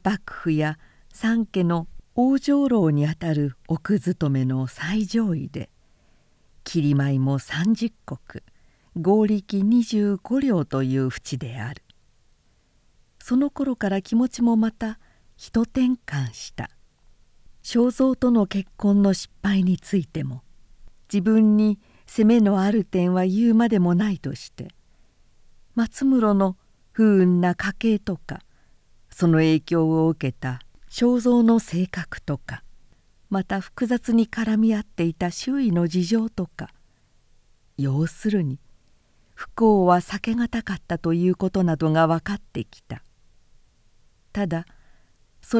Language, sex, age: Japanese, female, 50-69